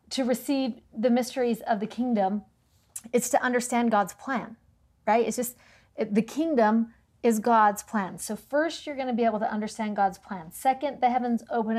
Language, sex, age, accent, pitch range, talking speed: English, female, 40-59, American, 210-250 Hz, 175 wpm